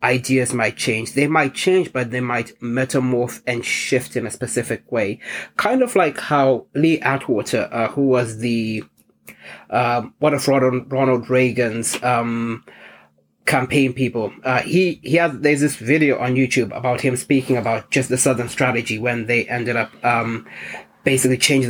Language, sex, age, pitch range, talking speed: English, male, 30-49, 120-135 Hz, 160 wpm